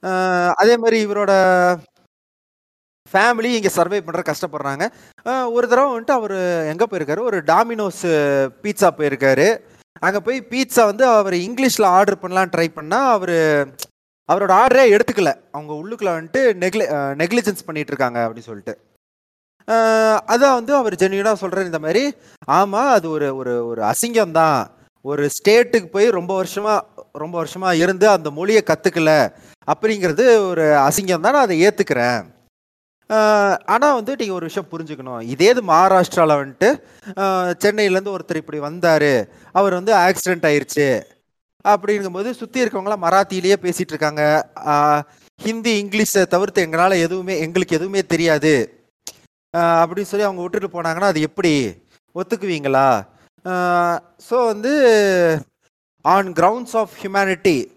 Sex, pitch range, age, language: male, 155-210 Hz, 30-49, Tamil